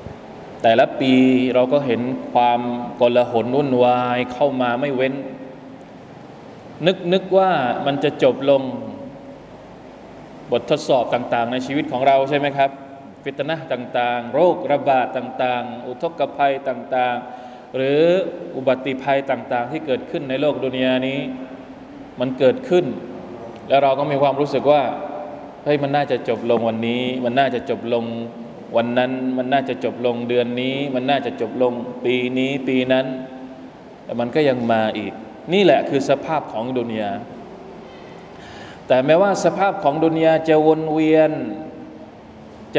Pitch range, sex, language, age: 125-145 Hz, male, Thai, 20-39